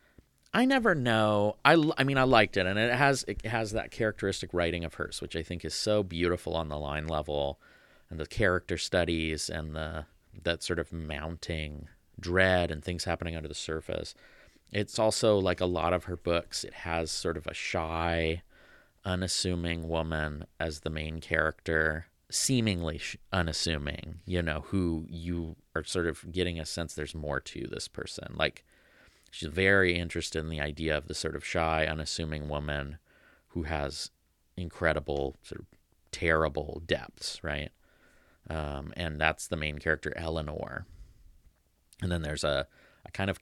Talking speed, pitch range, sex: 165 wpm, 75-90 Hz, male